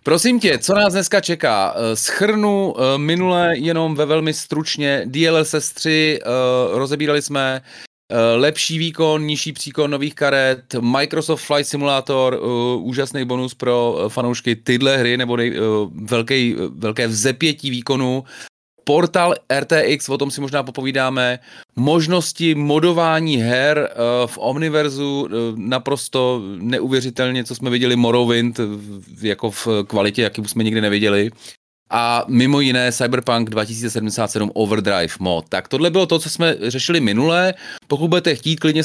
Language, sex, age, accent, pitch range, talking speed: Czech, male, 30-49, native, 120-155 Hz, 125 wpm